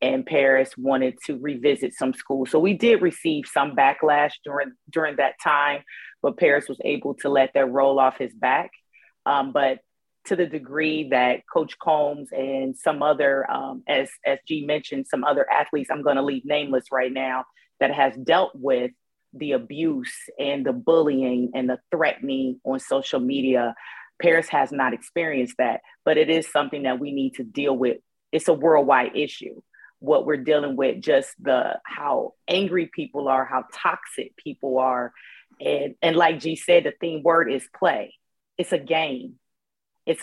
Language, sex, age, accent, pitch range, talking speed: English, female, 30-49, American, 130-160 Hz, 170 wpm